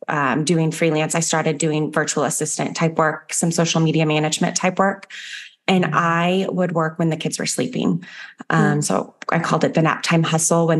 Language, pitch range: English, 160-190 Hz